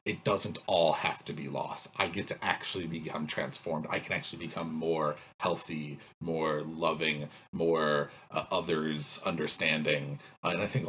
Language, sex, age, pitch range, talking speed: English, male, 30-49, 80-125 Hz, 160 wpm